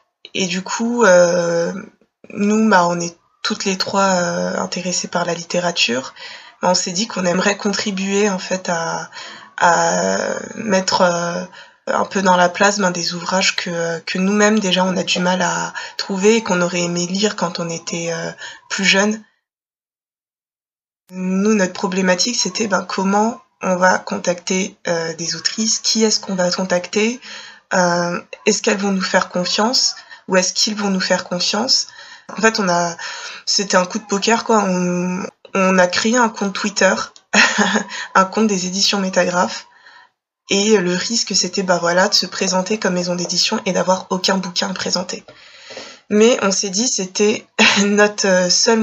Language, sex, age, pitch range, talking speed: French, female, 20-39, 180-210 Hz, 170 wpm